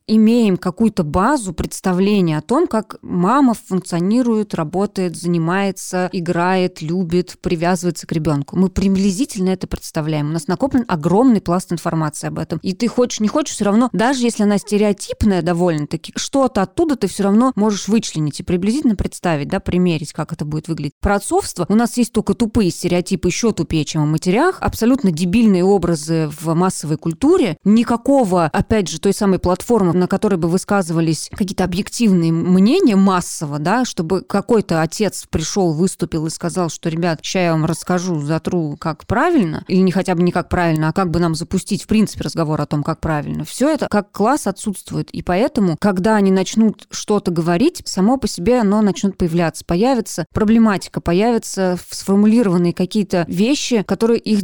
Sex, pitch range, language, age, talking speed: female, 175-215 Hz, Russian, 20-39, 165 wpm